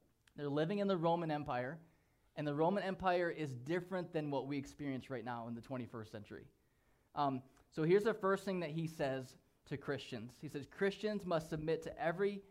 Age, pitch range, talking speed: 20-39, 140-175 Hz, 190 wpm